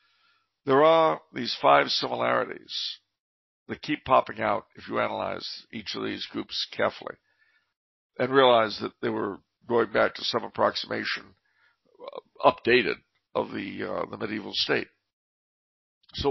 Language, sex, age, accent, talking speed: English, male, 60-79, American, 130 wpm